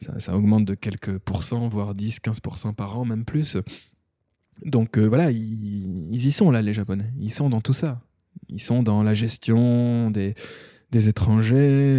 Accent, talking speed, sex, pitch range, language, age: French, 175 wpm, male, 105-145 Hz, French, 20-39